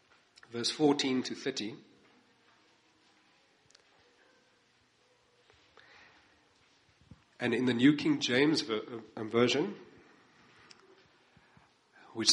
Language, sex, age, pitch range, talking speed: English, male, 40-59, 115-150 Hz, 60 wpm